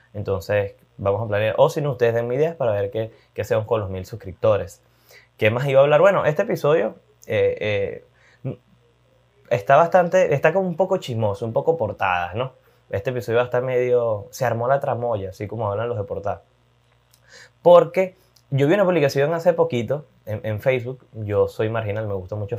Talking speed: 185 wpm